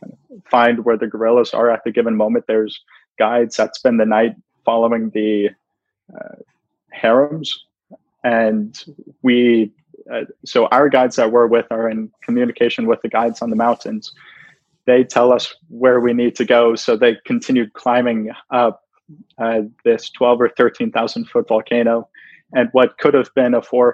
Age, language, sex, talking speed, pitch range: 20-39, English, male, 165 wpm, 115-125 Hz